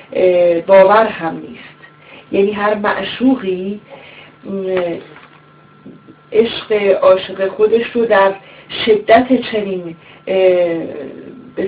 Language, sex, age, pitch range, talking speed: Persian, female, 40-59, 180-210 Hz, 70 wpm